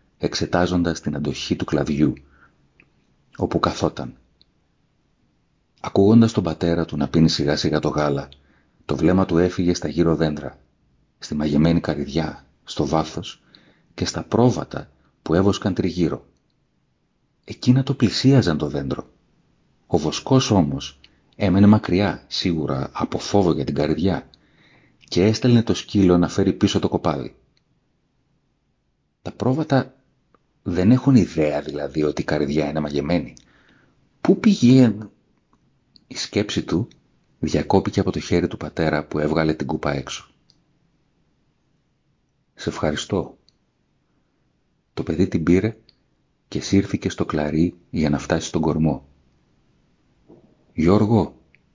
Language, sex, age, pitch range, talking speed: Greek, male, 40-59, 75-100 Hz, 120 wpm